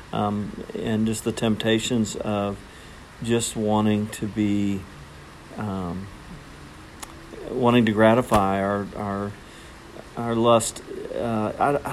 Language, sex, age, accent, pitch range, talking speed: English, male, 50-69, American, 105-115 Hz, 95 wpm